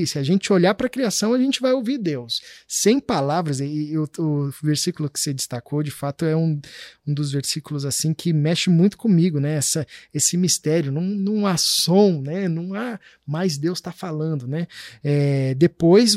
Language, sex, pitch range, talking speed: Portuguese, male, 145-190 Hz, 180 wpm